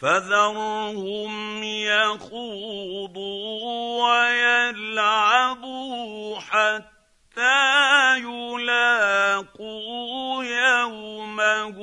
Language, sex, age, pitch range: Arabic, male, 50-69, 215-260 Hz